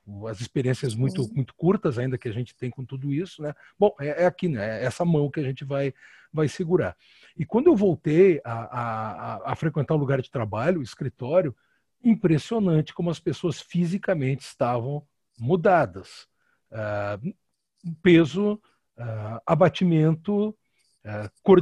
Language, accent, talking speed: Portuguese, Brazilian, 160 wpm